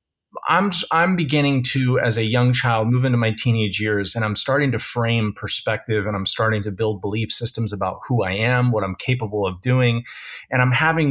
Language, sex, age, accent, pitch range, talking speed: English, male, 30-49, American, 100-125 Hz, 205 wpm